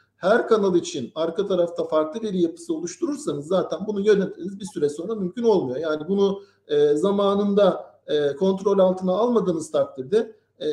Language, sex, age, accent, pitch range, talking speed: Turkish, male, 50-69, native, 180-225 Hz, 150 wpm